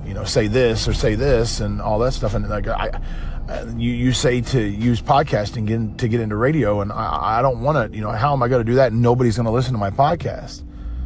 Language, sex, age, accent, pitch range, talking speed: English, male, 30-49, American, 105-140 Hz, 250 wpm